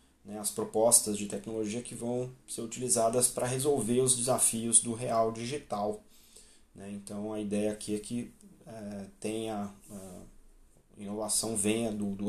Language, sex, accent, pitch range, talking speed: Portuguese, male, Brazilian, 100-115 Hz, 135 wpm